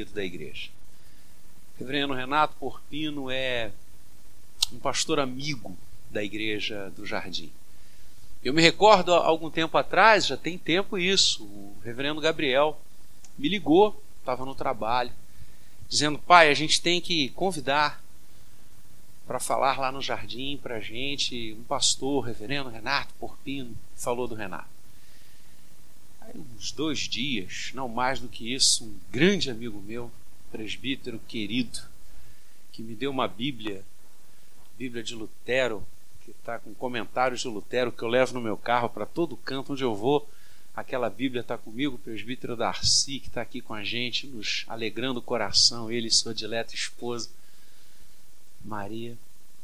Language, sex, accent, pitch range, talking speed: Portuguese, male, Brazilian, 105-140 Hz, 140 wpm